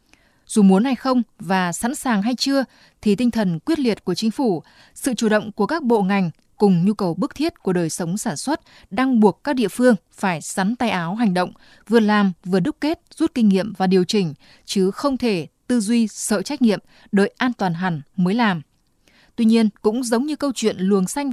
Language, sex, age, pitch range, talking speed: Vietnamese, female, 20-39, 195-250 Hz, 220 wpm